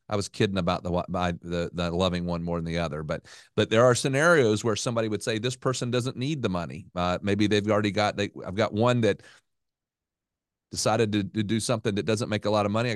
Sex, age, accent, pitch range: male, 40-59, American, 100-125 Hz